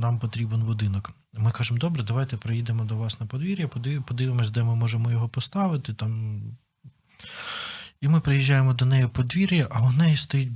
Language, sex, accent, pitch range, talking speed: Ukrainian, male, native, 115-130 Hz, 170 wpm